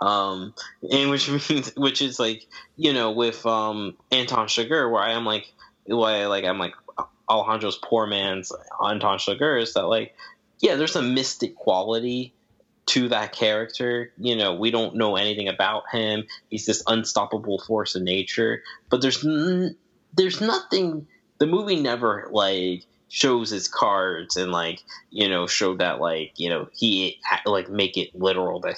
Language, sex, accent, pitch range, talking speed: English, male, American, 95-125 Hz, 165 wpm